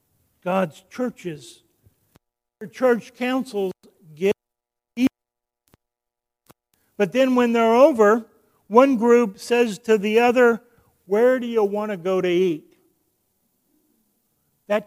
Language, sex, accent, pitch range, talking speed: English, male, American, 145-210 Hz, 110 wpm